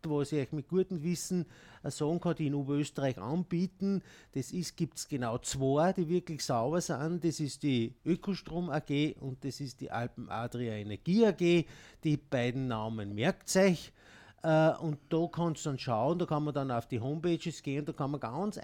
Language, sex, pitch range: German, male, 135-170 Hz